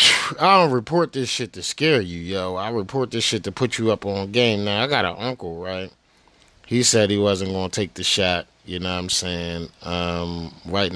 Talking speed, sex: 225 wpm, male